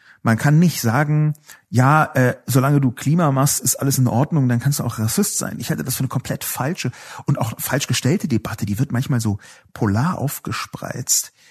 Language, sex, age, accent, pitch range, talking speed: German, male, 40-59, German, 115-150 Hz, 200 wpm